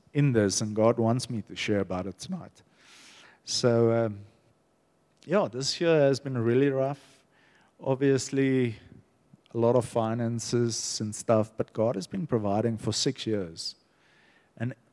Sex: male